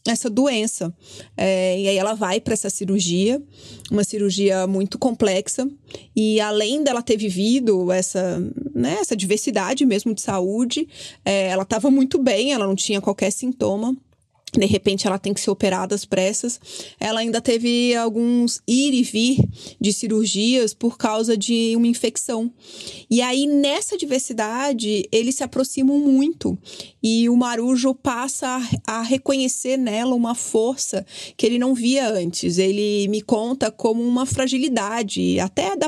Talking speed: 150 wpm